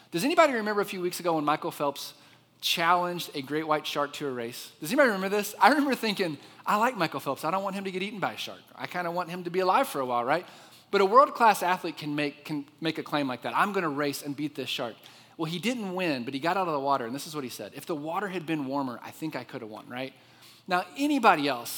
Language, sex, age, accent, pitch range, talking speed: English, male, 30-49, American, 130-175 Hz, 285 wpm